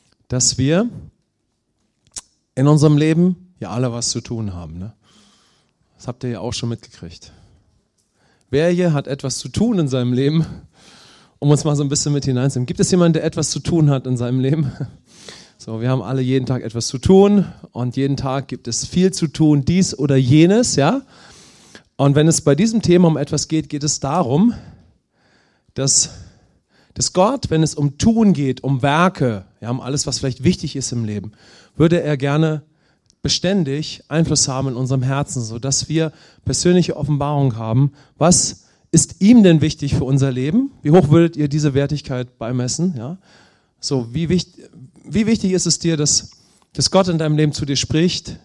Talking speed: 180 wpm